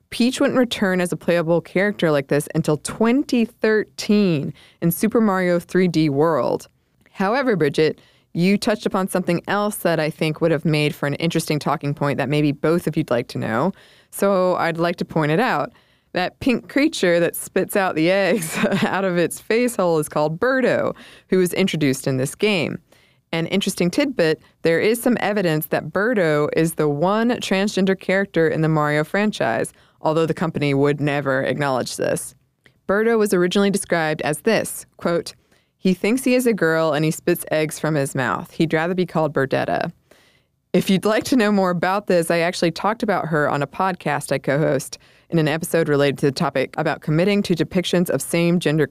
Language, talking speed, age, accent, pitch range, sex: English, 185 wpm, 20-39, American, 155-195 Hz, female